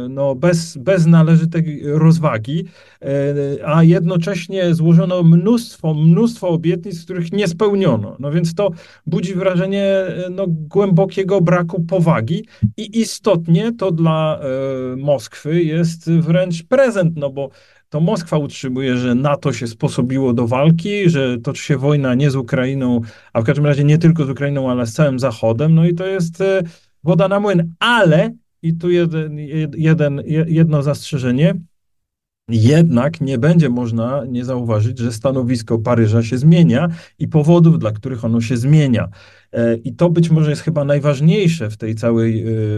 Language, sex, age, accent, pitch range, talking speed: Polish, male, 40-59, native, 130-175 Hz, 140 wpm